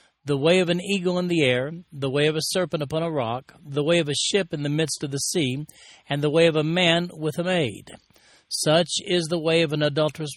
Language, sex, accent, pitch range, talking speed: English, male, American, 140-175 Hz, 250 wpm